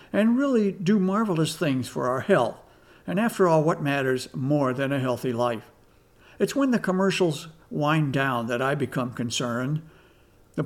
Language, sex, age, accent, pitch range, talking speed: English, male, 60-79, American, 135-185 Hz, 165 wpm